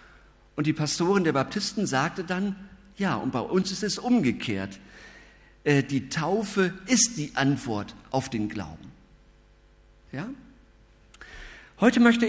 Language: German